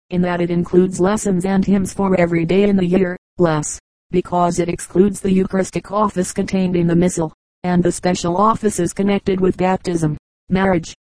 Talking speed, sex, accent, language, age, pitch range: 175 wpm, female, American, English, 40-59, 175-195 Hz